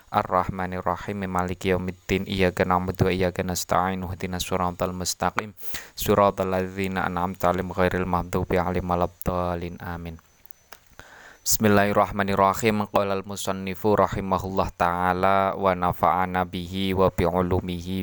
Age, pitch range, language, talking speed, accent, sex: 20-39, 90-105 Hz, Indonesian, 120 wpm, native, male